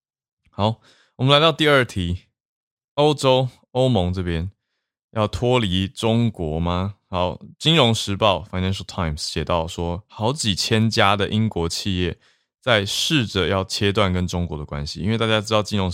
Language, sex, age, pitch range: Chinese, male, 20-39, 90-115 Hz